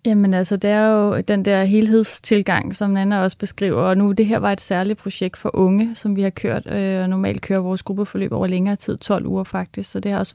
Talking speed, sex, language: 245 wpm, female, Danish